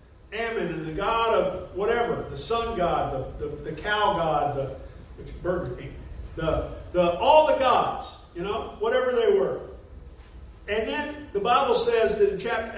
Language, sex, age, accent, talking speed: English, male, 40-59, American, 165 wpm